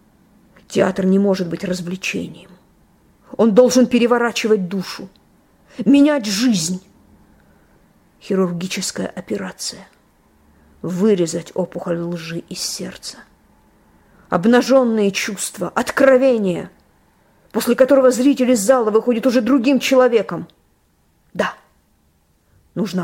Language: Russian